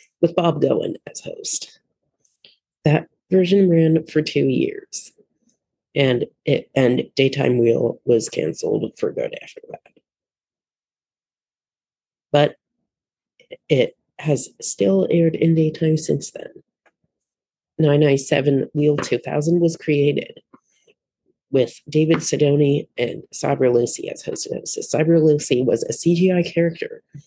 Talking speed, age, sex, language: 120 wpm, 30-49, female, English